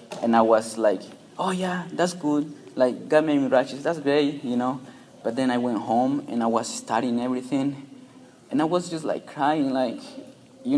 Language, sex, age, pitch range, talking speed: English, male, 20-39, 115-160 Hz, 195 wpm